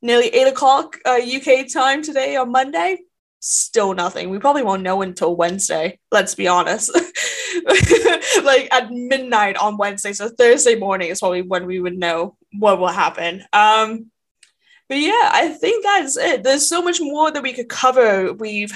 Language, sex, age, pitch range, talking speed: English, female, 10-29, 205-275 Hz, 165 wpm